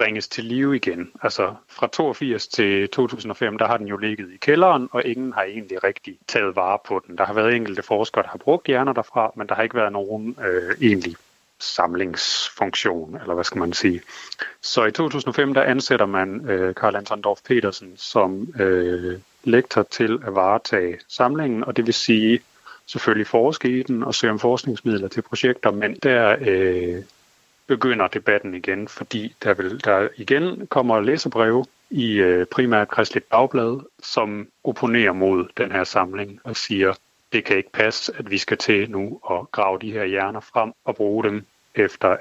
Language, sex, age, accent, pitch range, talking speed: Danish, male, 30-49, native, 95-120 Hz, 180 wpm